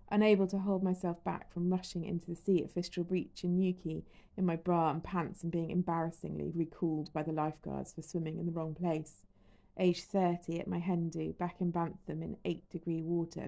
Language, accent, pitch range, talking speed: English, British, 165-200 Hz, 200 wpm